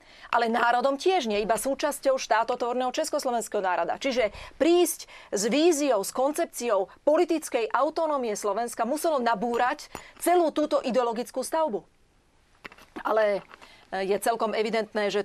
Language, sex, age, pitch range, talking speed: Slovak, female, 30-49, 205-270 Hz, 115 wpm